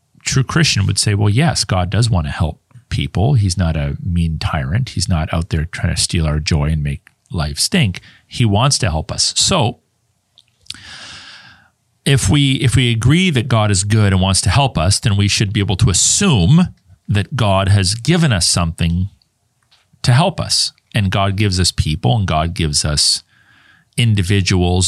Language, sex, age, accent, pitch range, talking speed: English, male, 40-59, American, 90-125 Hz, 185 wpm